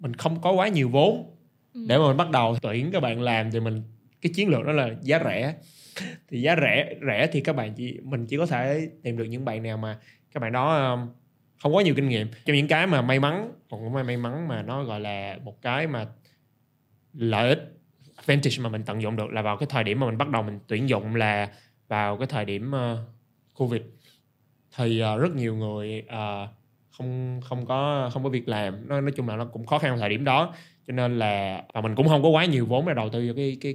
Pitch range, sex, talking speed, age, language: 110-140 Hz, male, 235 wpm, 20-39, Vietnamese